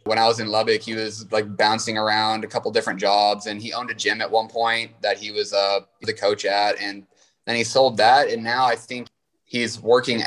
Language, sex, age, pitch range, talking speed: English, male, 20-39, 105-120 Hz, 235 wpm